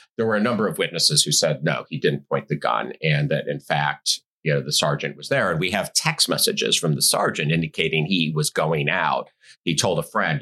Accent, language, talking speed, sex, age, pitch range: American, English, 235 wpm, male, 50-69, 75-110 Hz